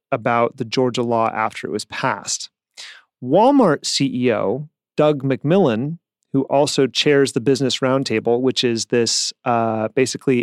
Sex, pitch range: male, 115-145 Hz